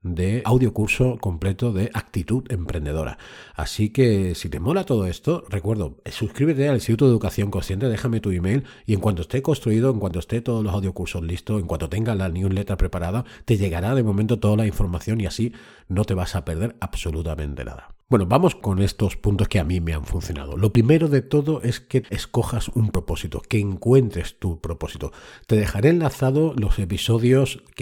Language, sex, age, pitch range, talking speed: Spanish, male, 40-59, 95-120 Hz, 185 wpm